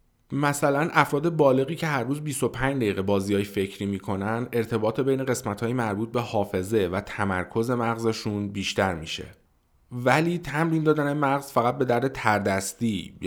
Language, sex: Persian, male